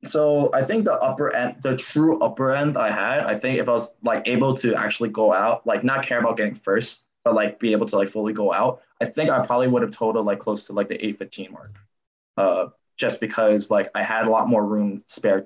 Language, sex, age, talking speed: English, male, 20-39, 250 wpm